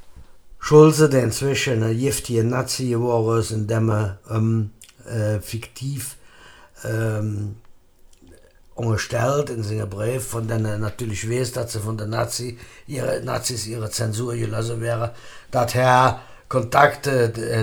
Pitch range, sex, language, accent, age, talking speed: 110-125 Hz, male, German, German, 60-79, 130 wpm